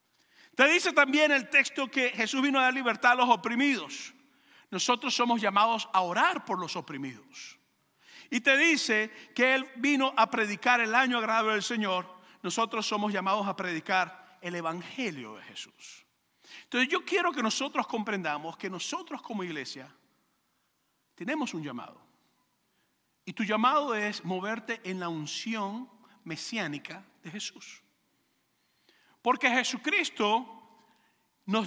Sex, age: male, 50-69